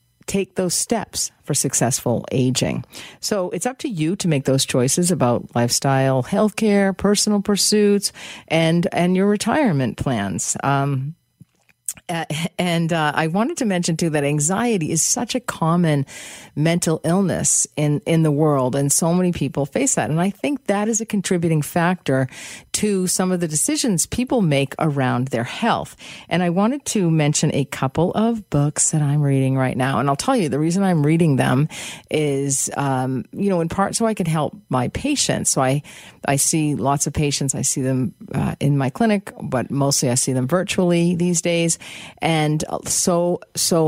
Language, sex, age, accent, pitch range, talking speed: English, female, 50-69, American, 140-190 Hz, 175 wpm